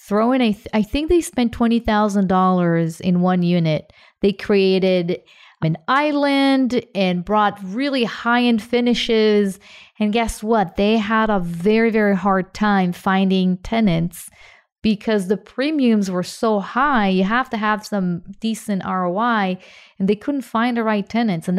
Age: 40-59